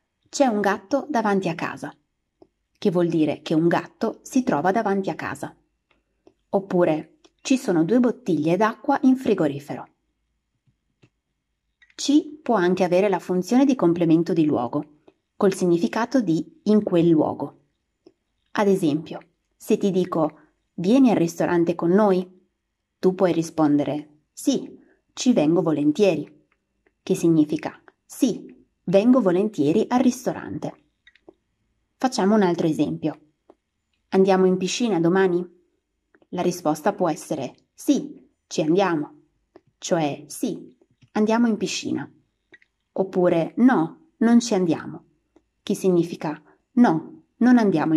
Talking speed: 120 wpm